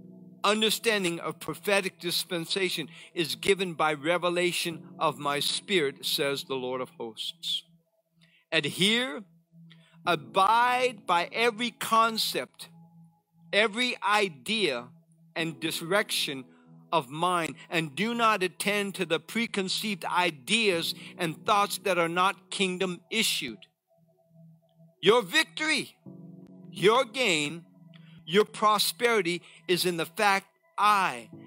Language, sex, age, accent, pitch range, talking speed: English, male, 50-69, American, 165-205 Hz, 100 wpm